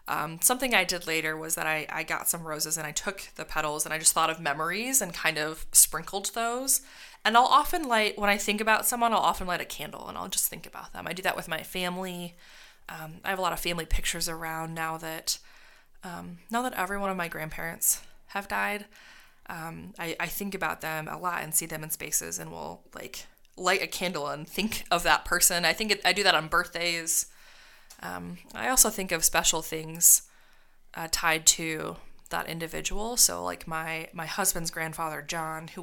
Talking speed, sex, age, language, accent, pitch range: 215 wpm, female, 20-39, English, American, 160-205 Hz